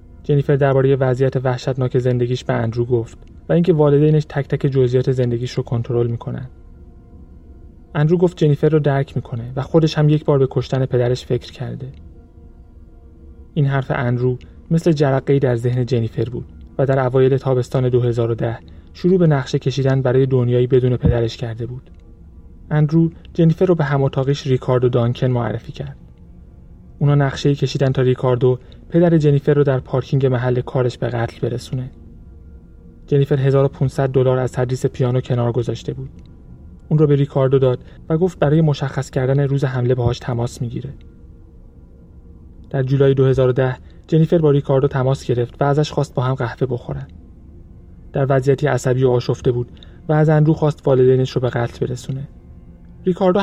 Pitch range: 120-145 Hz